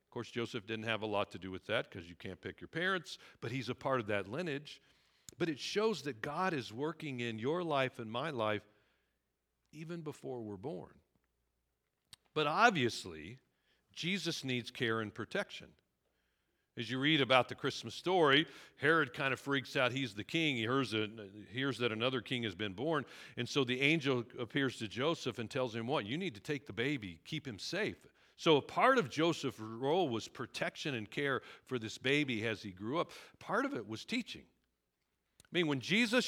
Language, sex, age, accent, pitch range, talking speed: English, male, 50-69, American, 110-150 Hz, 195 wpm